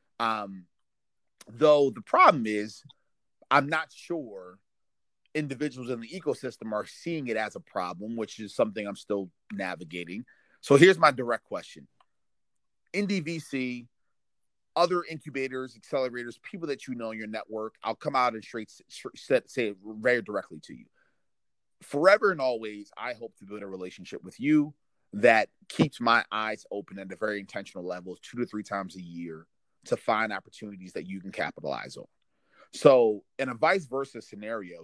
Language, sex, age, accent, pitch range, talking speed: English, male, 30-49, American, 100-140 Hz, 160 wpm